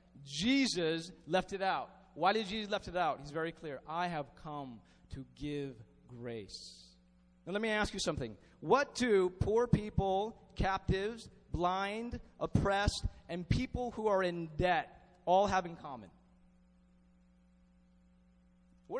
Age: 30-49